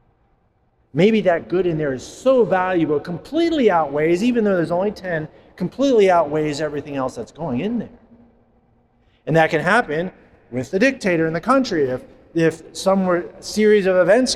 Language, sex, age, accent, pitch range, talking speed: English, male, 30-49, American, 140-190 Hz, 170 wpm